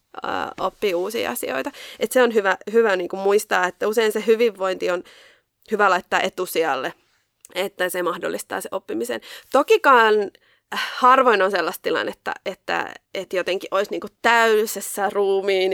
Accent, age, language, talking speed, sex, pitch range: native, 20-39, Finnish, 135 wpm, female, 195-270 Hz